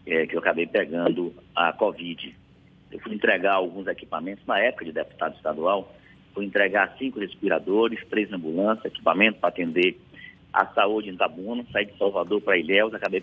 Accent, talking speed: Brazilian, 165 wpm